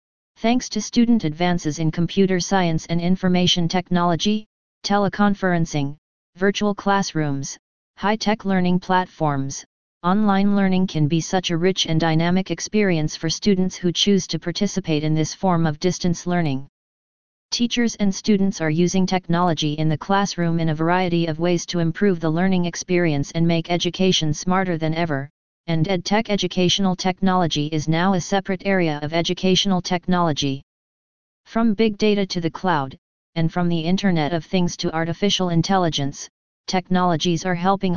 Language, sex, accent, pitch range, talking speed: English, female, American, 165-190 Hz, 145 wpm